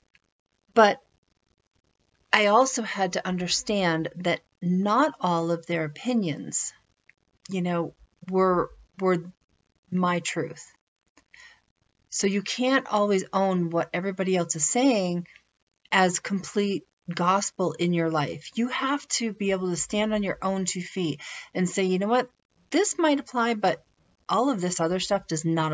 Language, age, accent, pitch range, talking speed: English, 40-59, American, 175-225 Hz, 145 wpm